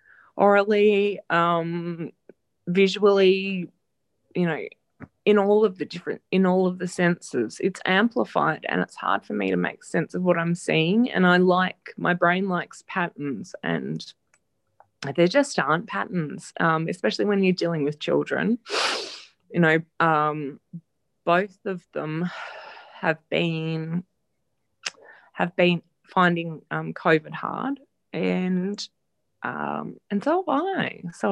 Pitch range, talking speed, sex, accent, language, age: 170-205 Hz, 130 wpm, female, Australian, English, 20-39